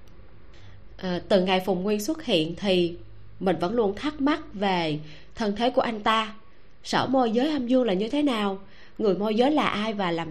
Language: Vietnamese